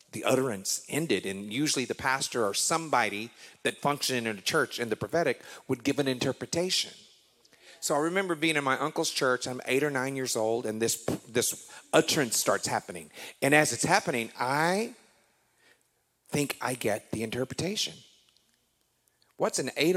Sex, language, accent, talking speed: male, English, American, 160 wpm